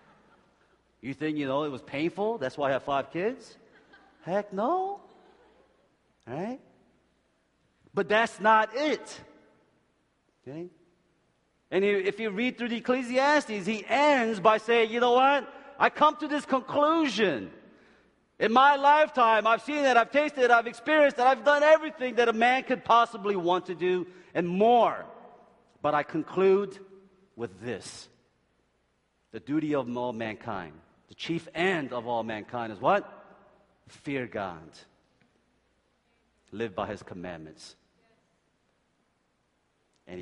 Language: Korean